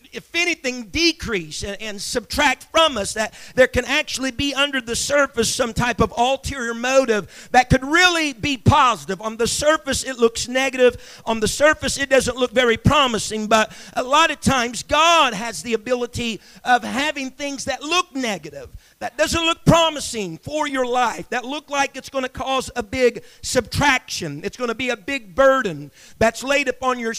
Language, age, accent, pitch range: English, 50-69, American, 235-290 Hz